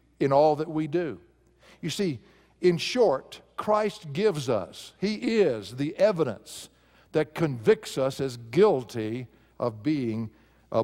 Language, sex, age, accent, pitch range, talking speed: English, male, 60-79, American, 130-175 Hz, 135 wpm